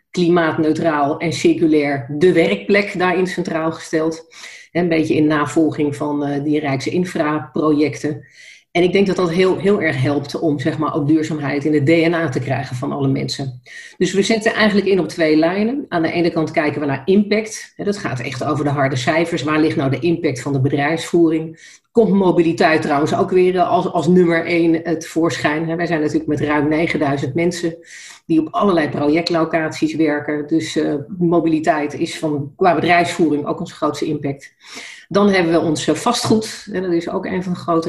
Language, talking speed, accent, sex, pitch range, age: Dutch, 180 wpm, Dutch, female, 150-175 Hz, 40-59